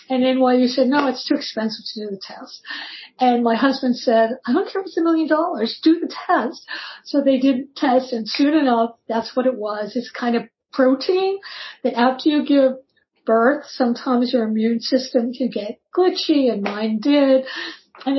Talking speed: 195 wpm